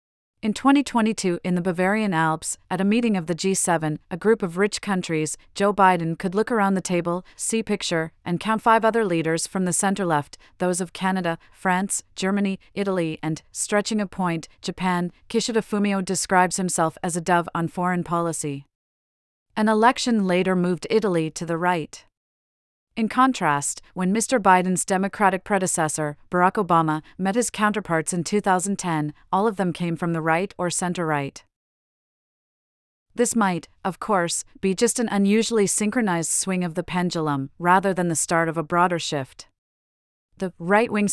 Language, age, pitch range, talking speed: English, 40-59, 165-200 Hz, 160 wpm